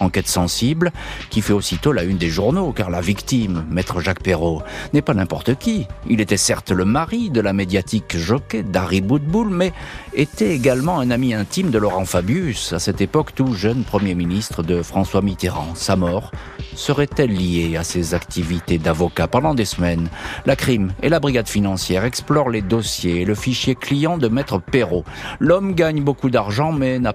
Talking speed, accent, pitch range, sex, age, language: 180 wpm, French, 90-135 Hz, male, 50-69, French